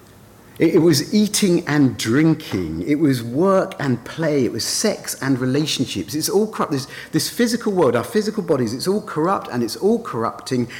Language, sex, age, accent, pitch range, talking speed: English, male, 40-59, British, 100-145 Hz, 180 wpm